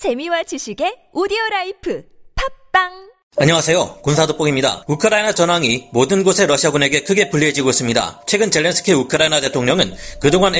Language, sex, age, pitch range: Korean, male, 30-49, 145-195 Hz